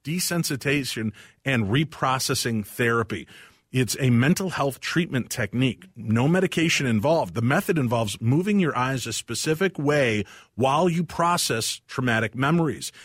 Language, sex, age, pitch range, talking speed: English, male, 40-59, 110-155 Hz, 125 wpm